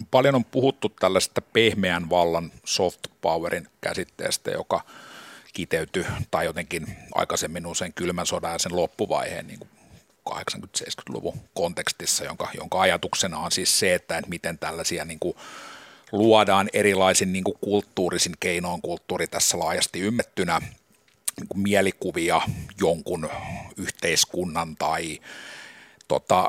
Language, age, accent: Finnish, 50-69, native